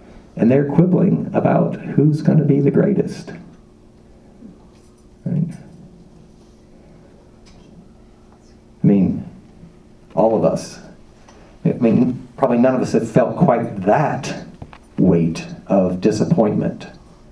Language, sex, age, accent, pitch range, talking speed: English, male, 50-69, American, 115-175 Hz, 95 wpm